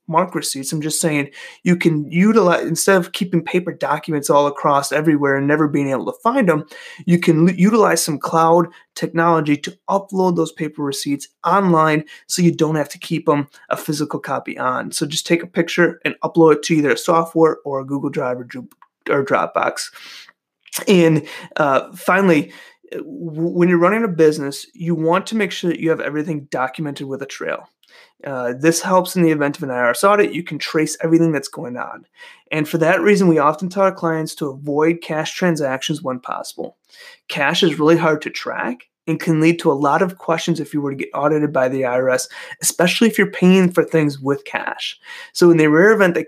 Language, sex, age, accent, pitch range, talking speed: English, male, 20-39, American, 150-185 Hz, 200 wpm